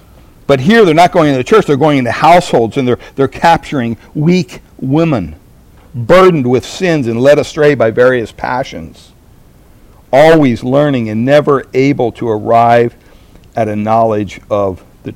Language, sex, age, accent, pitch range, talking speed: English, male, 60-79, American, 120-160 Hz, 155 wpm